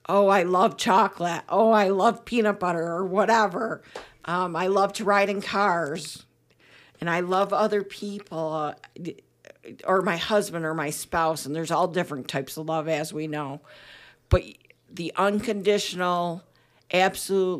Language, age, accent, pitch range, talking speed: English, 50-69, American, 155-190 Hz, 150 wpm